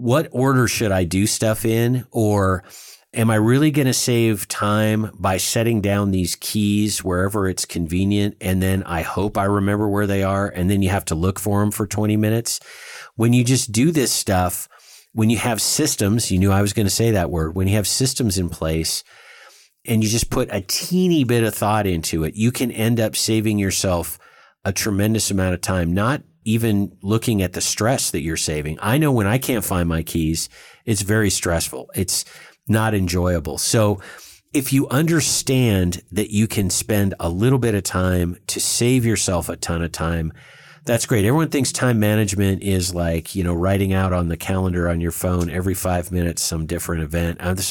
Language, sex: English, male